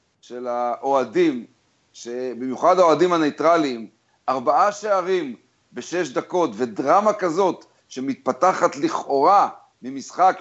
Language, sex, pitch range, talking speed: Hebrew, male, 160-230 Hz, 80 wpm